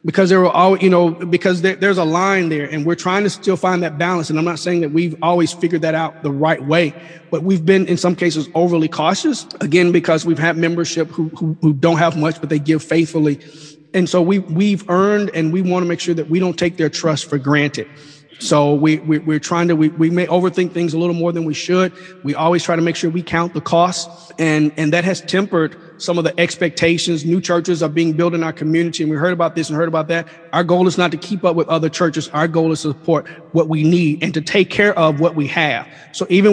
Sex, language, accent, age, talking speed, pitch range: male, English, American, 30-49, 255 wpm, 160-180 Hz